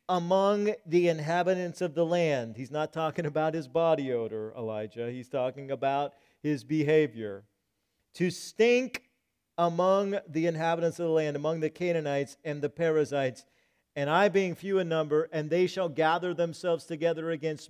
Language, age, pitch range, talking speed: English, 50-69, 135-165 Hz, 155 wpm